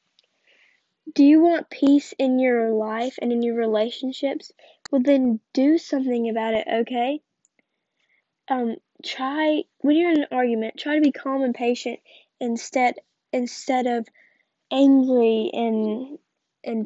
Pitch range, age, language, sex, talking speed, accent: 245-290 Hz, 10-29, English, female, 130 wpm, American